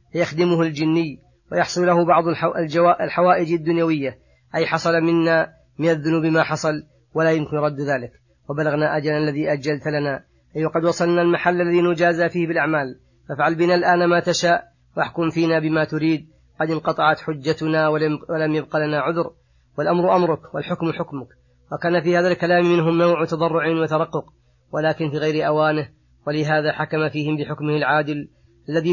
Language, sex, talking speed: Arabic, female, 140 wpm